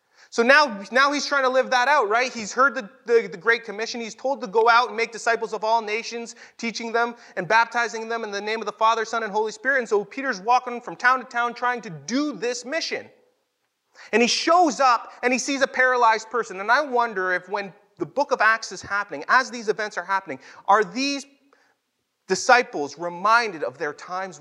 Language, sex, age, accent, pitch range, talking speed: English, male, 30-49, American, 225-285 Hz, 220 wpm